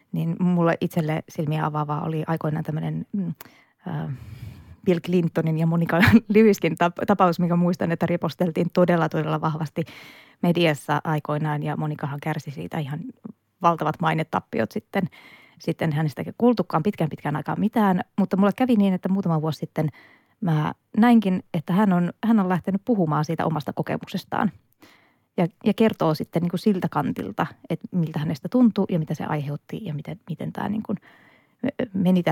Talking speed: 150 wpm